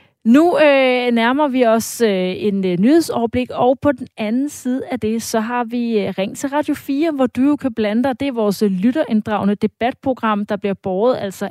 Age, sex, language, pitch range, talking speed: 30-49, female, Danish, 200-250 Hz, 205 wpm